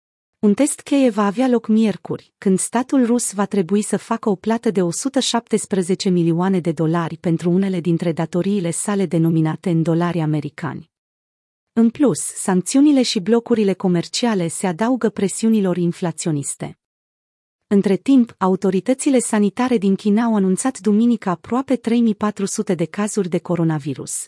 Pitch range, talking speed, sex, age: 175-220 Hz, 135 wpm, female, 30-49